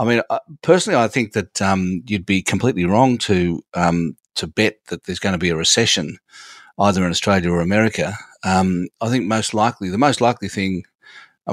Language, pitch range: English, 95-115 Hz